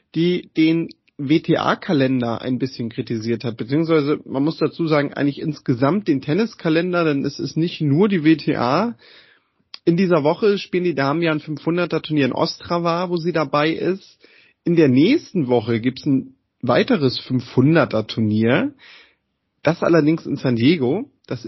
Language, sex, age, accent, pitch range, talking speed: German, male, 30-49, German, 135-175 Hz, 155 wpm